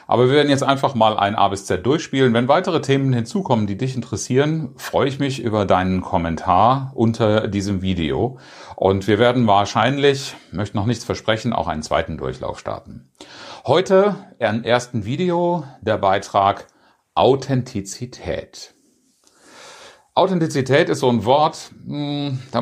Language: German